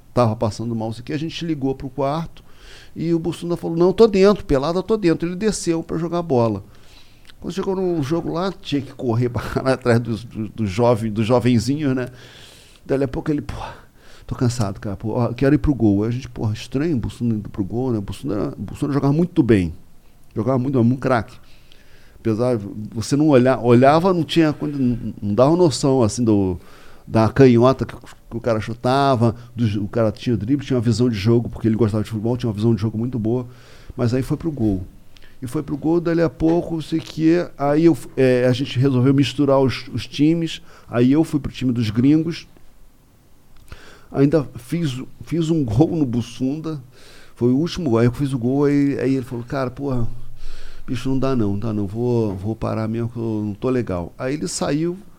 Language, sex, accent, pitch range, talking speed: Portuguese, male, Brazilian, 115-145 Hz, 210 wpm